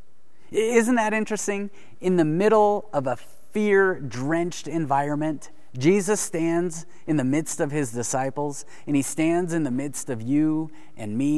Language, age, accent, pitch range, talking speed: English, 30-49, American, 130-175 Hz, 150 wpm